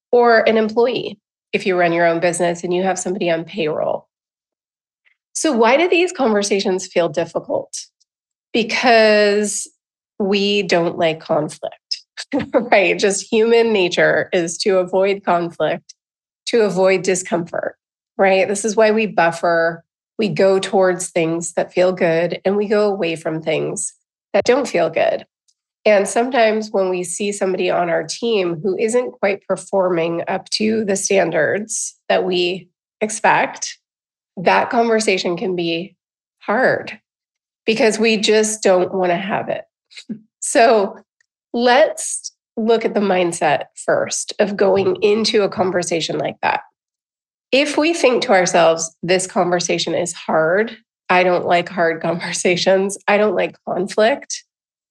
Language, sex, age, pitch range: English, female, 30-49, 175-215 Hz